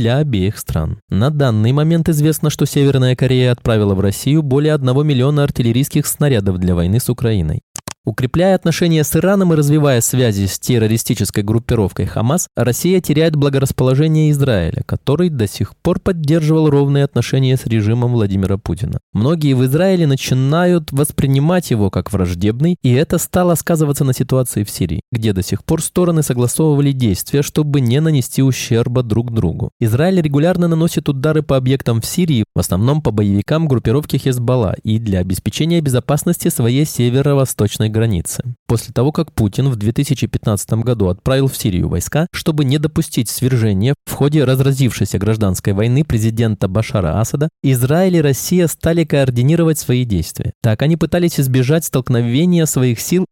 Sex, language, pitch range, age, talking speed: male, Russian, 115-150 Hz, 20-39, 150 wpm